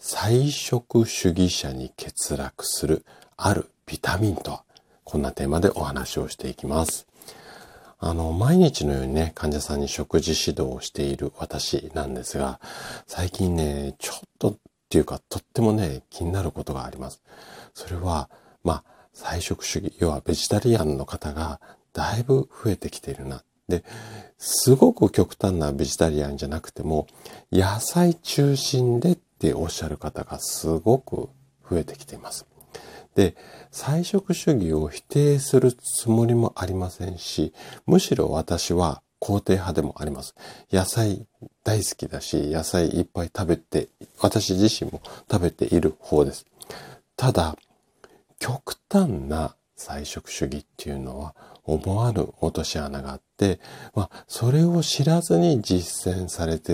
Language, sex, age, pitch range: Japanese, male, 50-69, 75-115 Hz